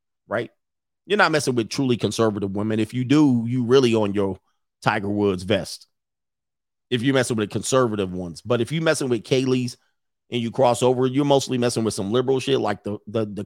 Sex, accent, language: male, American, English